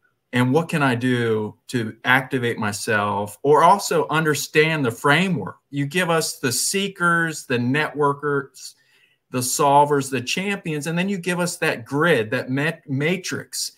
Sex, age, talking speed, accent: male, 40-59, 145 wpm, American